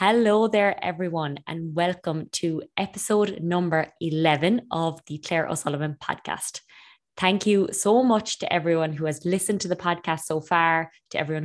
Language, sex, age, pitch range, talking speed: English, female, 20-39, 150-180 Hz, 155 wpm